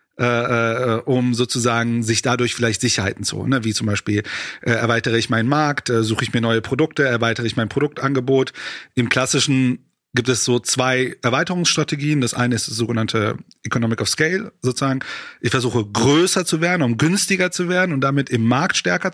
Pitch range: 120-160 Hz